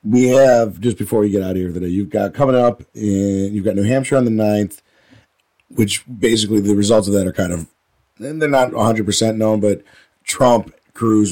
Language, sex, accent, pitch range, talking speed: English, male, American, 95-115 Hz, 205 wpm